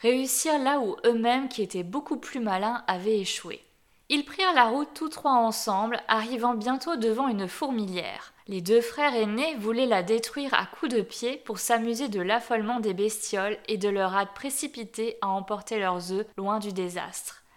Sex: female